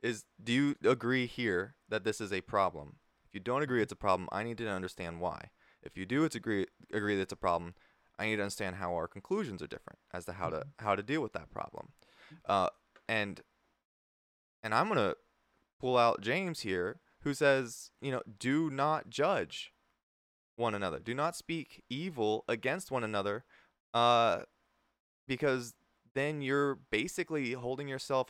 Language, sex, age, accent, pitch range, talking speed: English, male, 20-39, American, 105-145 Hz, 175 wpm